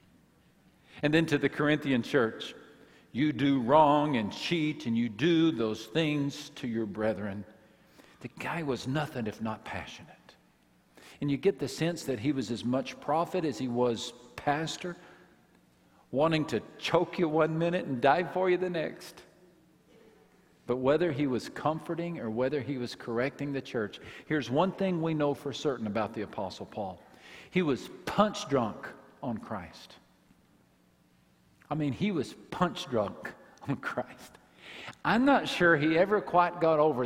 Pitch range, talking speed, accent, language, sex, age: 120-165 Hz, 160 wpm, American, English, male, 50-69